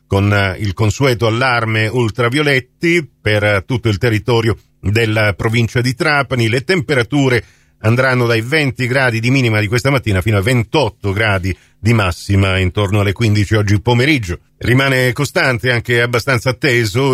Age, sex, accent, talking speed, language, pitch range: 50-69, male, native, 140 wpm, Italian, 105-125 Hz